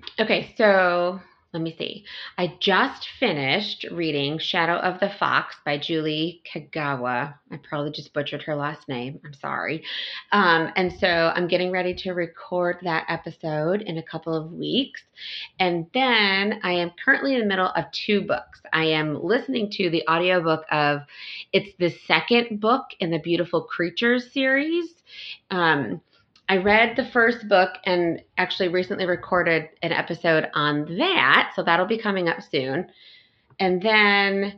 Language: English